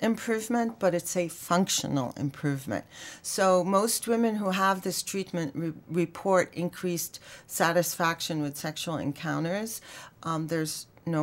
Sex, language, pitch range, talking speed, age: female, English, 155-185 Hz, 120 wpm, 40-59